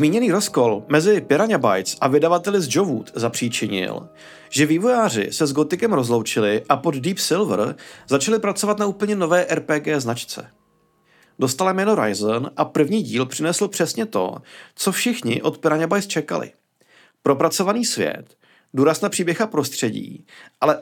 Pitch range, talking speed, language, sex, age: 135-200 Hz, 140 wpm, Czech, male, 40-59